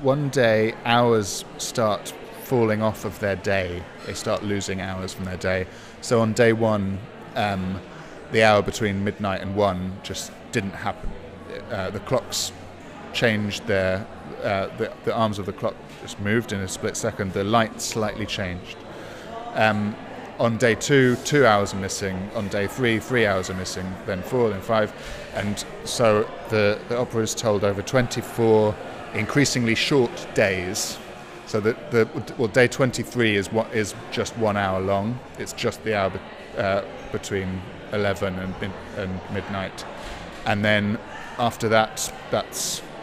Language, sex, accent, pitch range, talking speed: English, male, British, 100-115 Hz, 155 wpm